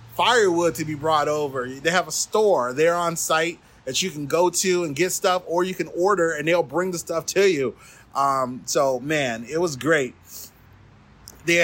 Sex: male